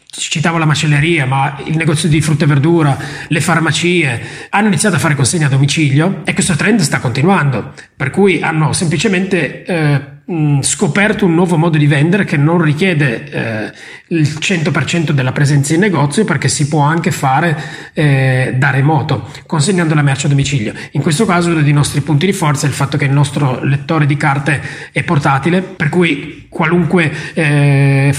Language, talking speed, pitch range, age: Italian, 175 wpm, 145-175 Hz, 30-49